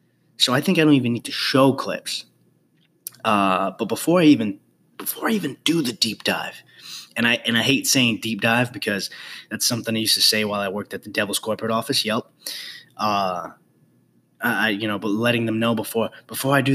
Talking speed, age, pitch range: 210 wpm, 20-39, 110-145 Hz